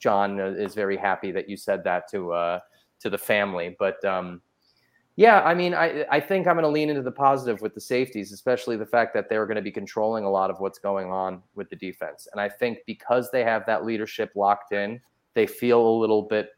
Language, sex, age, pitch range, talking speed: English, male, 30-49, 95-120 Hz, 230 wpm